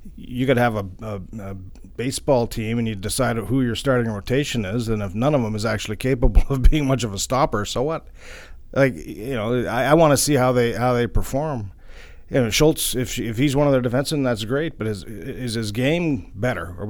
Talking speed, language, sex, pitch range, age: 225 wpm, English, male, 95-125 Hz, 40-59